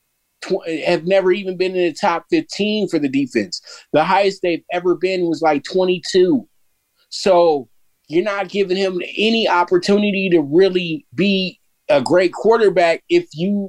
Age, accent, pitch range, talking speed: 20-39, American, 160-200 Hz, 150 wpm